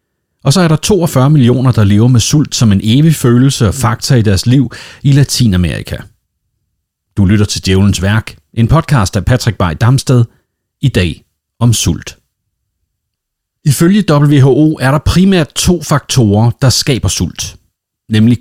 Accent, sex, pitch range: native, male, 95-135 Hz